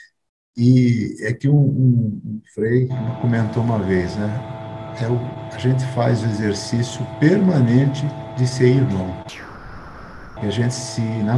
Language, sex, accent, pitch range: Portuguese, male, Brazilian, 110-135 Hz